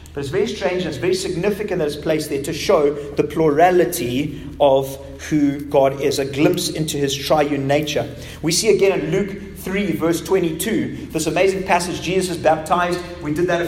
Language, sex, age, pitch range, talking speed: English, male, 30-49, 145-175 Hz, 195 wpm